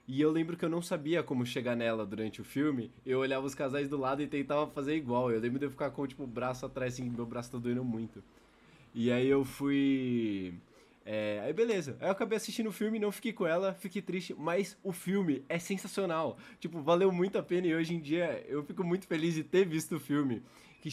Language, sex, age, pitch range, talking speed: Portuguese, male, 20-39, 145-190 Hz, 230 wpm